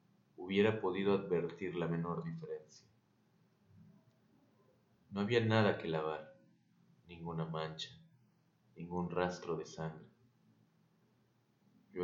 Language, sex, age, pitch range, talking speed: Spanish, male, 30-49, 85-120 Hz, 90 wpm